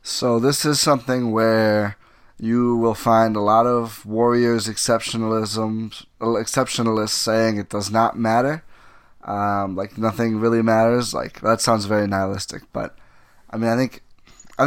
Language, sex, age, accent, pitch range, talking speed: English, male, 20-39, American, 110-125 Hz, 145 wpm